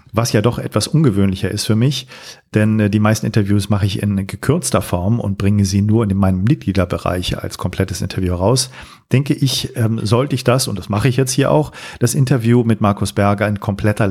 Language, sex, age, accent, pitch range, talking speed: German, male, 40-59, German, 105-125 Hz, 200 wpm